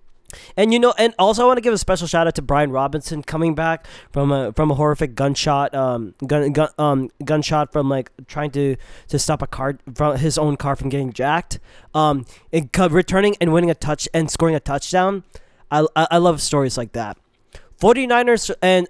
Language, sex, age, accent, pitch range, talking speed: English, male, 20-39, American, 140-215 Hz, 205 wpm